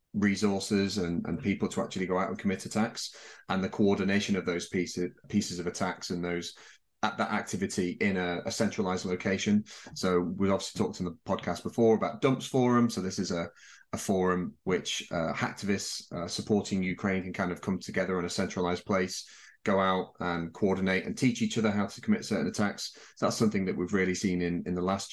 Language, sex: English, male